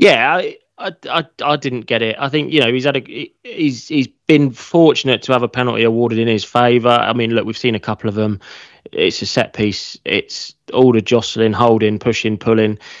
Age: 20-39